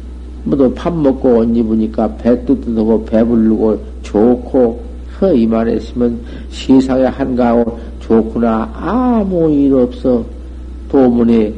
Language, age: Korean, 50-69